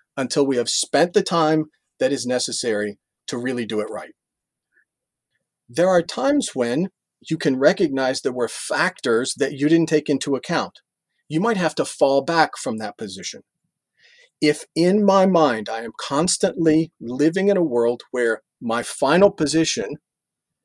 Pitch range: 130-175 Hz